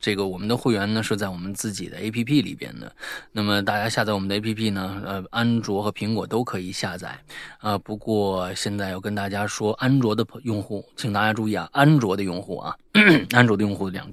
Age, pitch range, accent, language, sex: 20-39, 105-165 Hz, native, Chinese, male